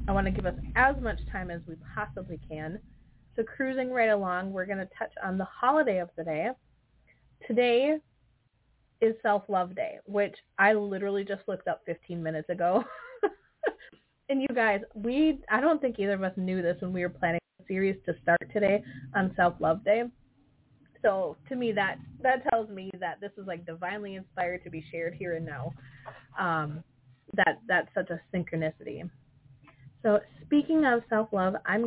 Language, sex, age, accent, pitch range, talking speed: English, female, 20-39, American, 180-225 Hz, 175 wpm